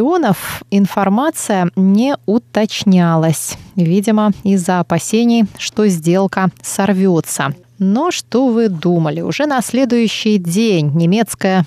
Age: 20-39